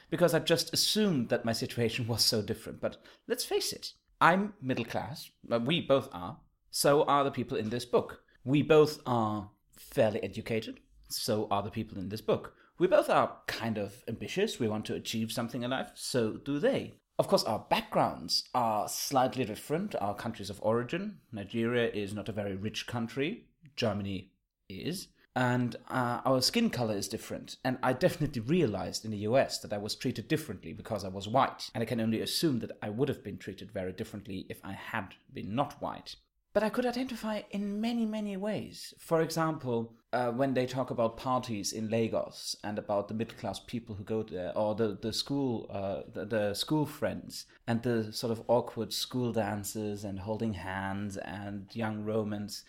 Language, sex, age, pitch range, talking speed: English, male, 30-49, 105-140 Hz, 185 wpm